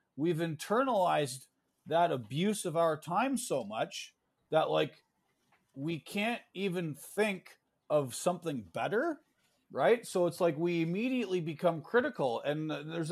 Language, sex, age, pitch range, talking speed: English, male, 40-59, 150-205 Hz, 130 wpm